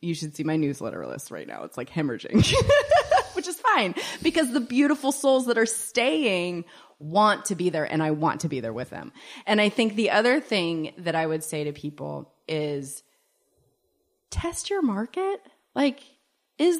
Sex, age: female, 20-39